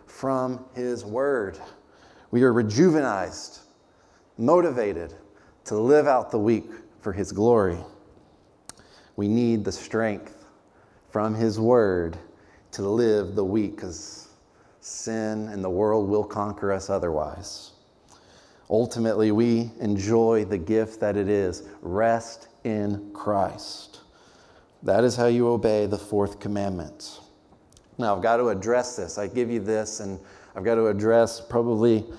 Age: 30-49